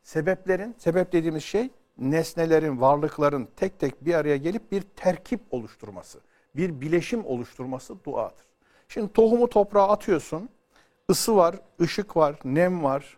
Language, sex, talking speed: Turkish, male, 125 wpm